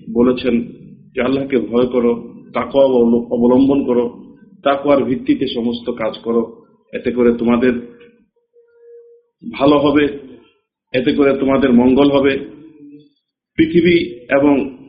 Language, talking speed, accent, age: Bengali, 100 wpm, native, 50-69